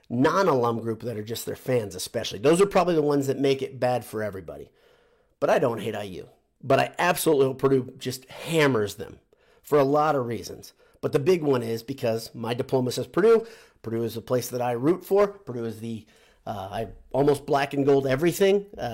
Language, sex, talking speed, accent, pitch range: English, male, 205 wpm, American, 115-145 Hz